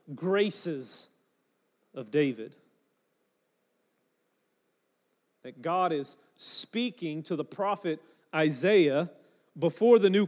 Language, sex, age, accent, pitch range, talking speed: English, male, 30-49, American, 160-205 Hz, 80 wpm